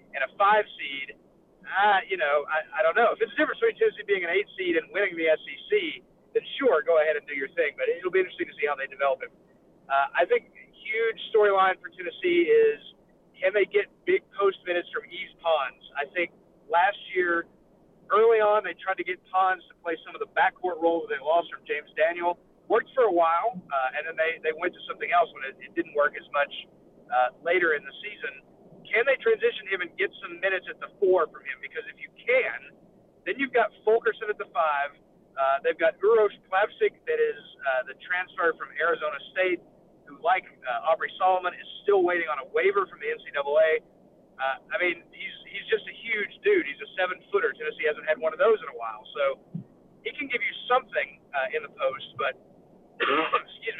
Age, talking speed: 40-59, 215 wpm